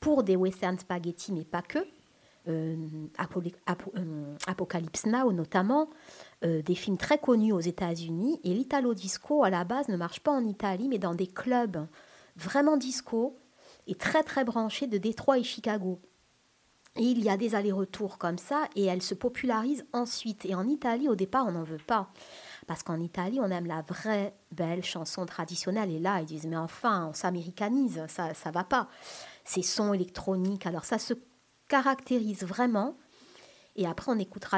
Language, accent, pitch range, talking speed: French, French, 180-245 Hz, 170 wpm